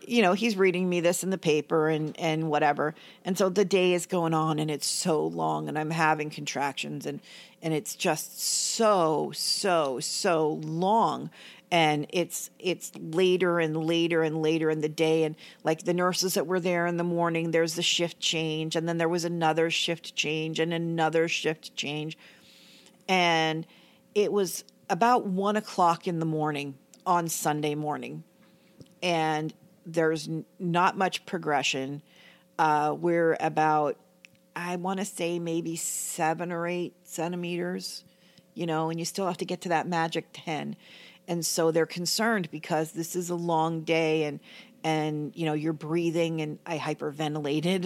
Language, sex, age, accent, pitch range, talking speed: English, female, 40-59, American, 155-180 Hz, 165 wpm